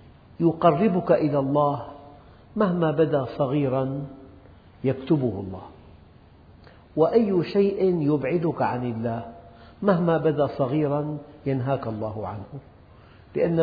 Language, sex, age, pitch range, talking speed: Arabic, male, 50-69, 125-170 Hz, 90 wpm